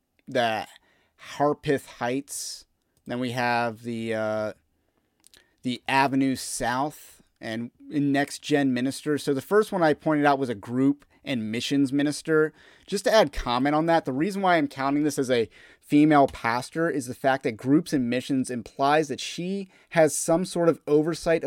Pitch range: 130-155 Hz